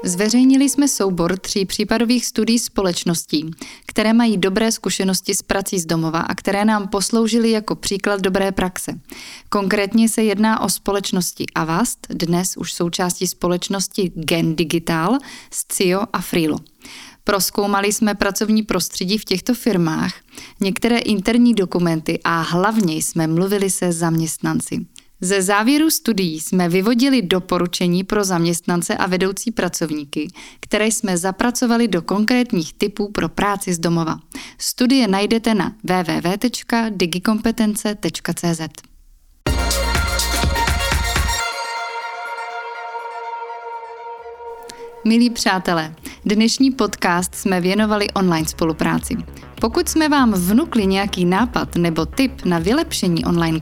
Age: 20-39